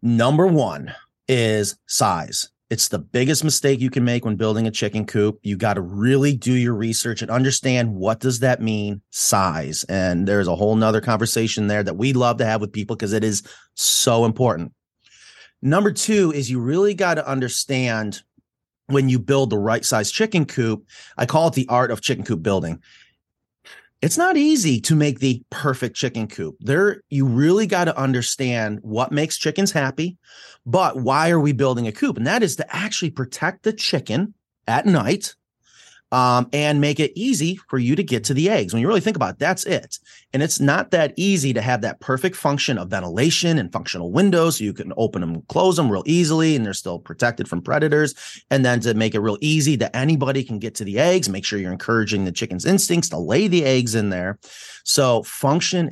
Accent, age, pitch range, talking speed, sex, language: American, 30-49, 110-155 Hz, 205 wpm, male, English